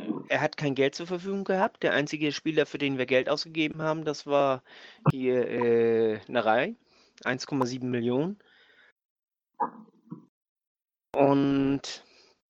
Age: 30-49